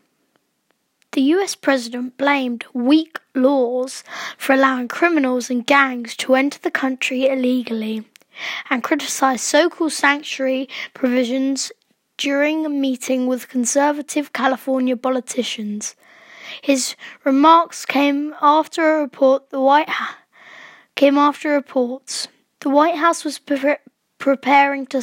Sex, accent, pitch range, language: female, British, 255-295 Hz, English